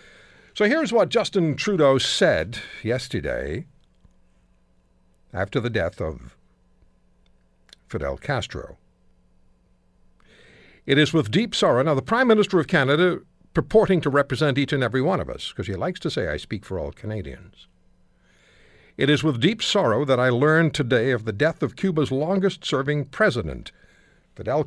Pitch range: 120-175 Hz